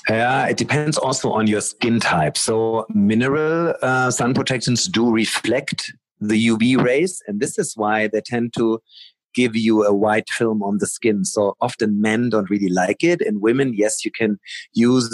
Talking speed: 180 wpm